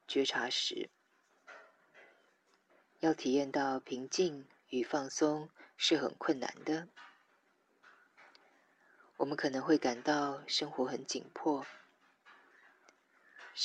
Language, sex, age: Chinese, female, 20-39